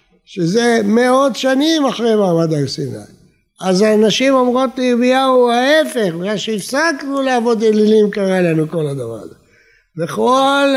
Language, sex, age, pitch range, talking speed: Hebrew, male, 60-79, 170-225 Hz, 125 wpm